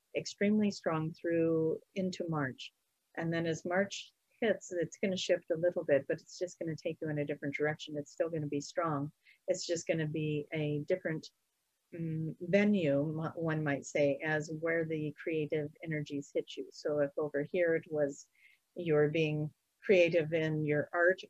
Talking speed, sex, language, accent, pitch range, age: 185 wpm, female, English, American, 155-180 Hz, 40-59